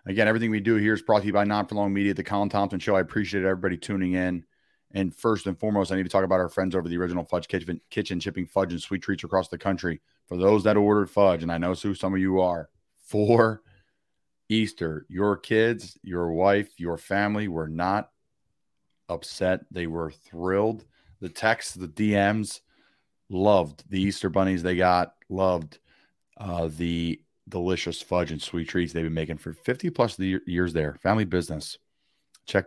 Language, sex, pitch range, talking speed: English, male, 90-105 Hz, 190 wpm